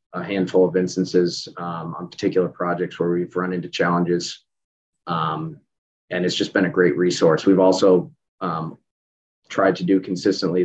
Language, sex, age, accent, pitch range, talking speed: English, male, 30-49, American, 90-95 Hz, 160 wpm